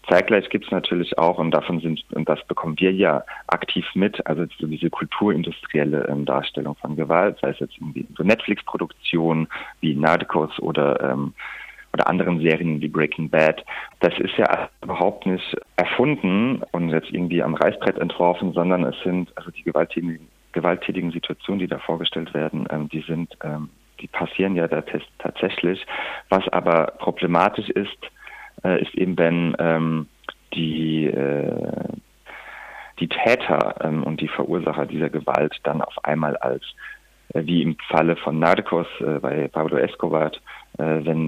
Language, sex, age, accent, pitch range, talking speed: German, male, 40-59, German, 80-85 Hz, 145 wpm